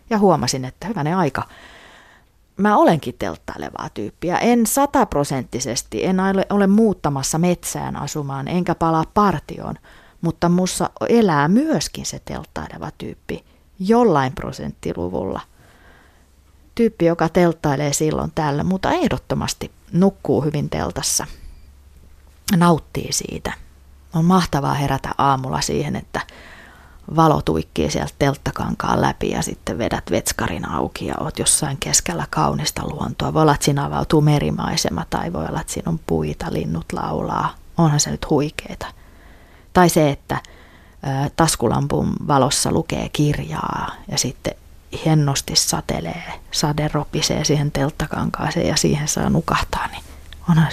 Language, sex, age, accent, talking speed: Finnish, female, 30-49, native, 120 wpm